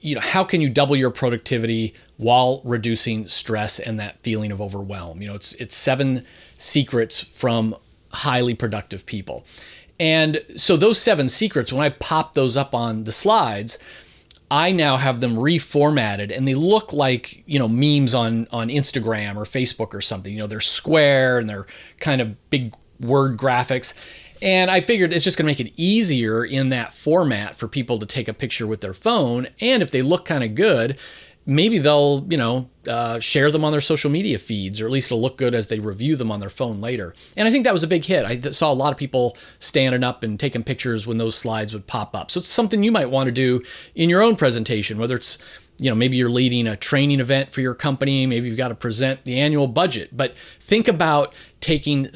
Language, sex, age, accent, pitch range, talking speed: English, male, 30-49, American, 110-145 Hz, 215 wpm